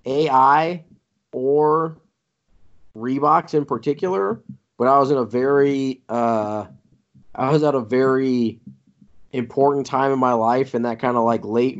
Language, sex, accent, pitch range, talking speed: English, male, American, 105-125 Hz, 140 wpm